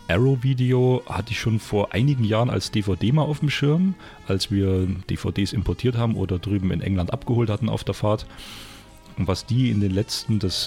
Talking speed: 190 wpm